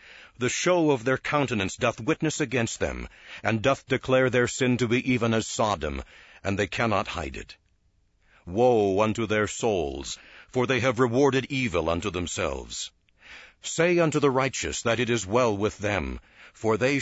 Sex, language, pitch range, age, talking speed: male, English, 105-135 Hz, 60-79, 165 wpm